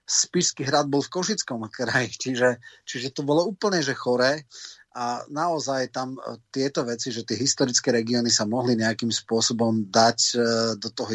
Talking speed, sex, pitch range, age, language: 155 wpm, male, 115-135 Hz, 30-49, Slovak